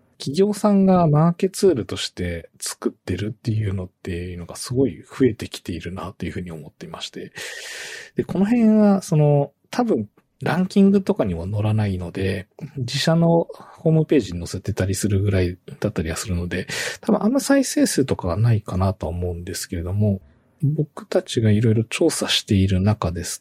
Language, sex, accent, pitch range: Japanese, male, native, 95-145 Hz